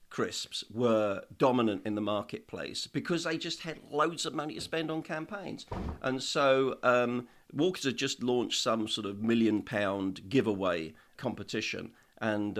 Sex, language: male, English